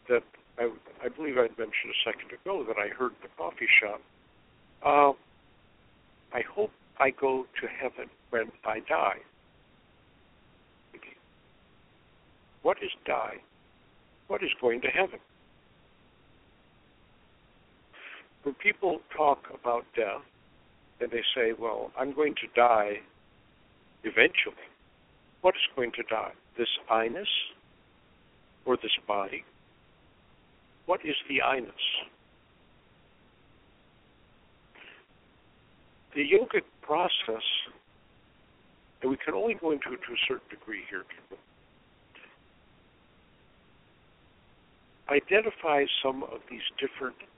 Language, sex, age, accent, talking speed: English, male, 60-79, American, 105 wpm